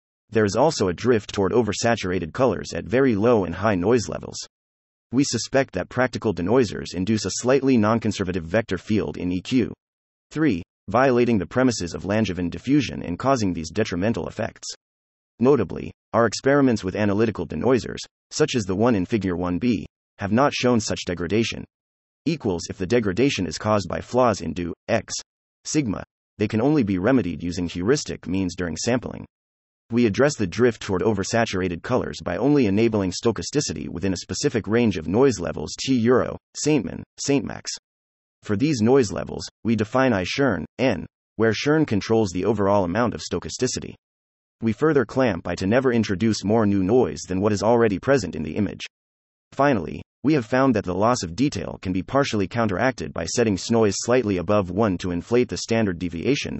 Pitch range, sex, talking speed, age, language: 90-120 Hz, male, 170 wpm, 30-49, English